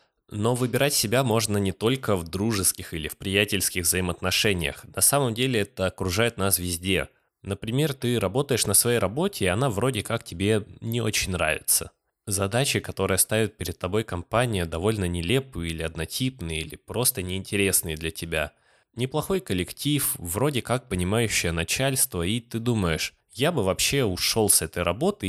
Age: 20-39